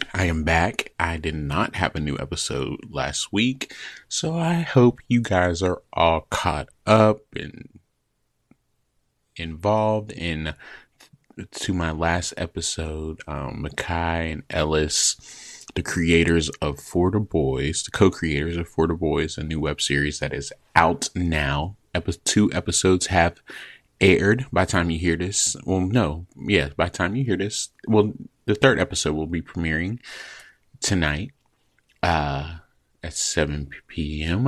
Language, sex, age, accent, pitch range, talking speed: English, male, 30-49, American, 80-100 Hz, 140 wpm